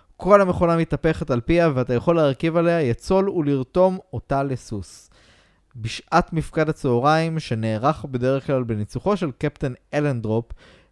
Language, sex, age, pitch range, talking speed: Hebrew, male, 20-39, 115-160 Hz, 125 wpm